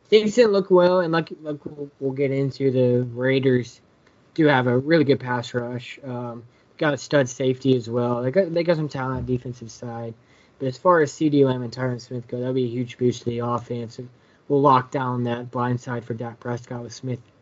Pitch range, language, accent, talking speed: 120-130 Hz, English, American, 225 wpm